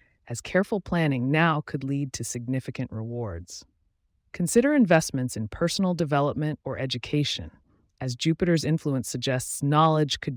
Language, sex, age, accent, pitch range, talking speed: English, female, 30-49, American, 115-160 Hz, 125 wpm